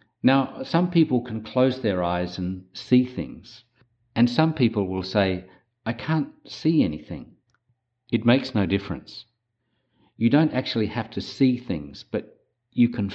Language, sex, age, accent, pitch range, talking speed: English, male, 50-69, Australian, 95-125 Hz, 150 wpm